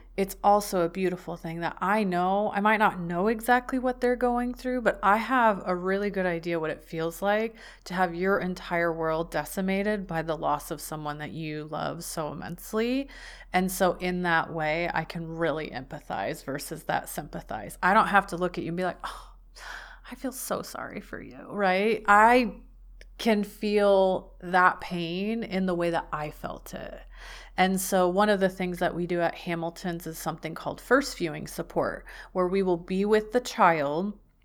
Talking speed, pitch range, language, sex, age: 190 wpm, 165-205 Hz, English, female, 30-49